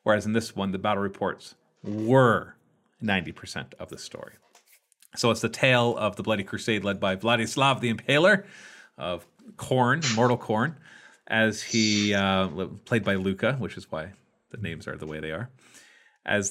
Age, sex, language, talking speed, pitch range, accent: 40-59, male, English, 170 wpm, 105-125 Hz, American